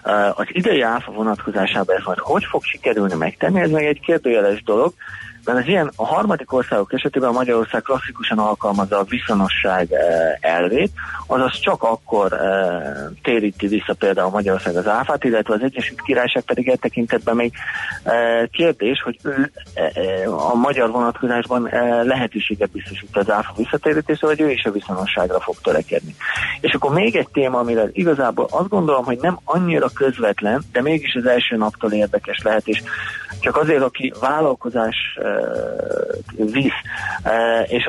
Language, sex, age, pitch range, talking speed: Hungarian, male, 30-49, 105-130 Hz, 150 wpm